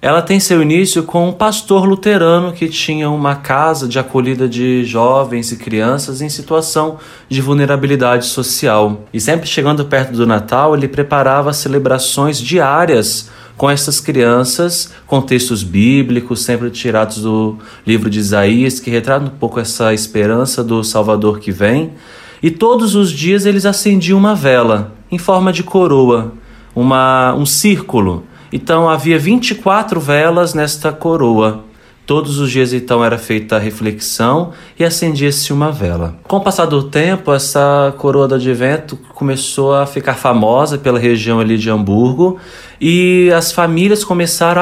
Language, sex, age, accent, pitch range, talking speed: Portuguese, male, 20-39, Brazilian, 120-160 Hz, 150 wpm